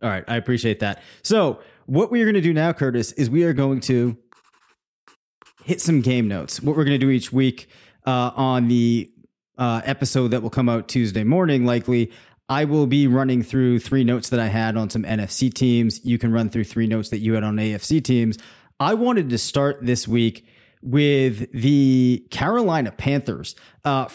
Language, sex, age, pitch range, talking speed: English, male, 20-39, 120-145 Hz, 195 wpm